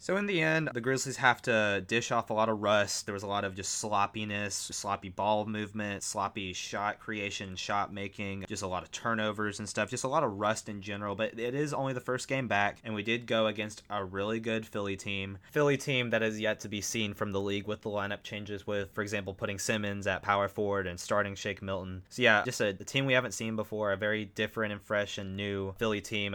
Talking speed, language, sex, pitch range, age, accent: 245 wpm, English, male, 100-115 Hz, 20-39, American